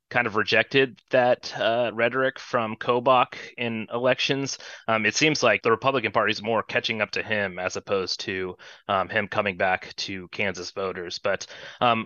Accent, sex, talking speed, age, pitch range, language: American, male, 175 wpm, 30-49, 100-115 Hz, English